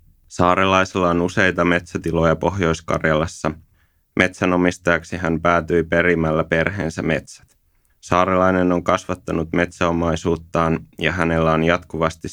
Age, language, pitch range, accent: 20-39, Finnish, 80-90 Hz, native